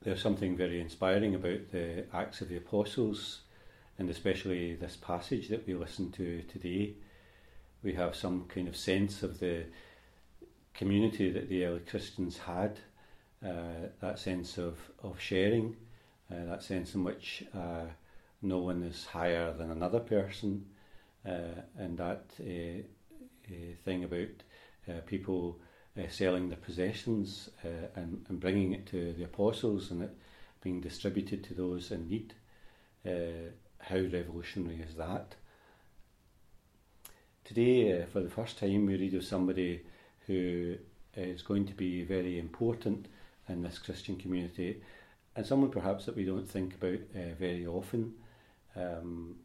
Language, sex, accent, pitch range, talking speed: English, male, British, 85-100 Hz, 145 wpm